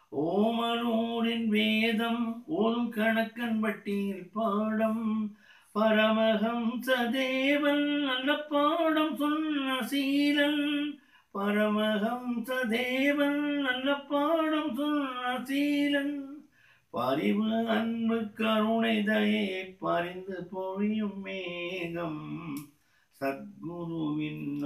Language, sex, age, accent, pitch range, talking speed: Tamil, male, 60-79, native, 175-240 Hz, 60 wpm